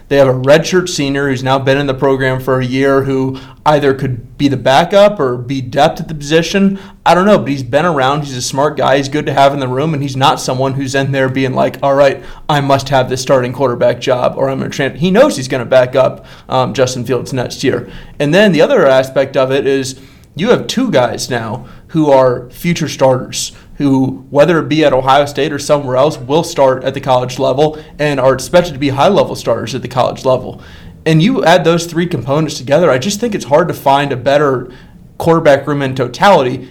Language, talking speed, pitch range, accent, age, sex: English, 230 wpm, 130-145 Hz, American, 30-49, male